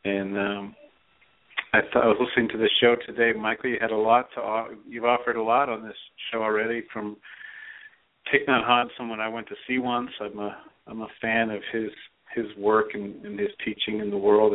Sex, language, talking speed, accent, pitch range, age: male, English, 205 wpm, American, 105-125 Hz, 50-69